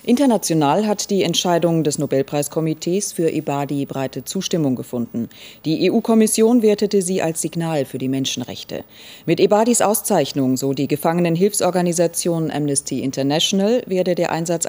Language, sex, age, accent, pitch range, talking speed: German, female, 30-49, German, 150-195 Hz, 125 wpm